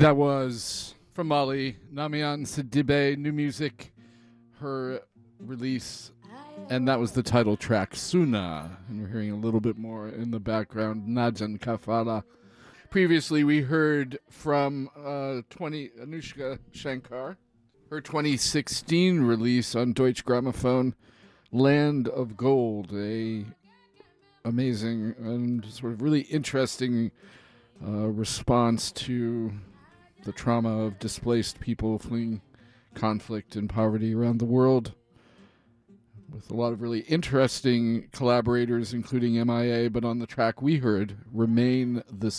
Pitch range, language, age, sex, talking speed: 110-130 Hz, English, 40-59, male, 120 wpm